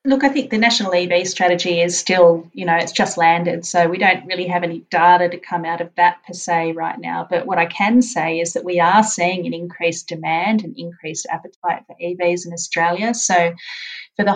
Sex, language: female, English